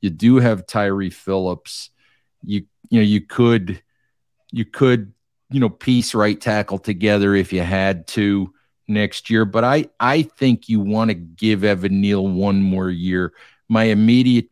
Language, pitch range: English, 95-115 Hz